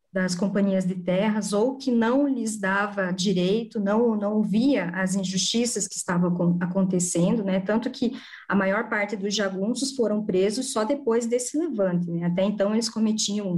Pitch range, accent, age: 190-230 Hz, Brazilian, 20-39